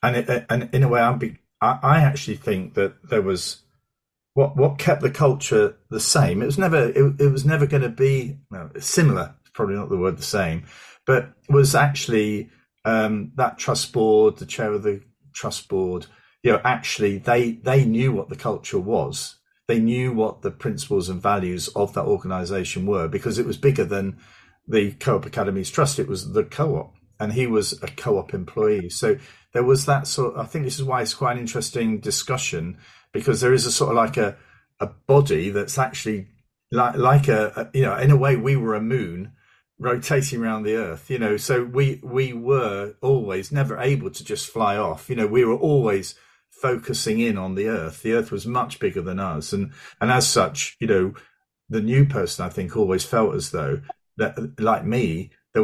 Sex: male